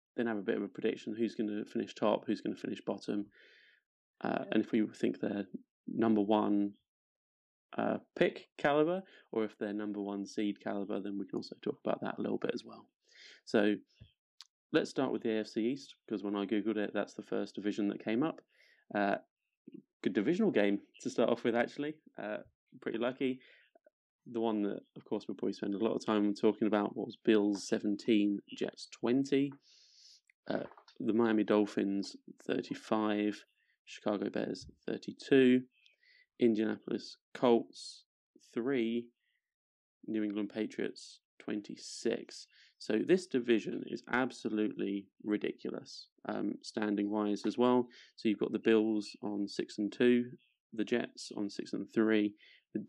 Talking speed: 160 wpm